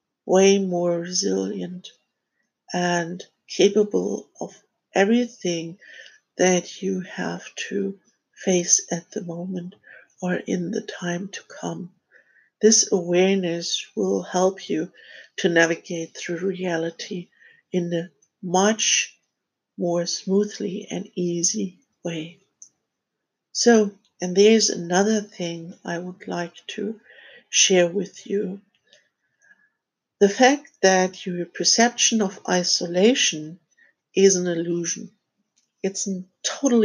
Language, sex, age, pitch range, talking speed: English, female, 60-79, 180-215 Hz, 105 wpm